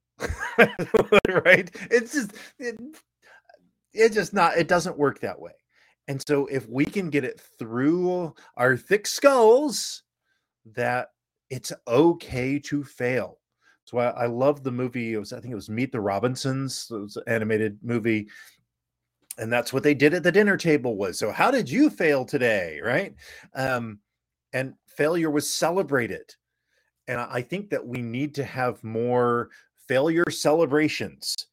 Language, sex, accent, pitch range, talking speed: English, male, American, 120-165 Hz, 160 wpm